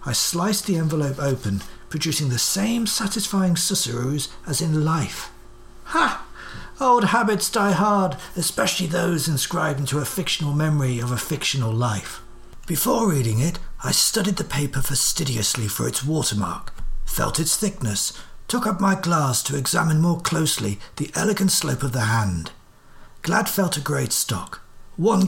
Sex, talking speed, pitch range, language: male, 150 wpm, 120-180 Hz, English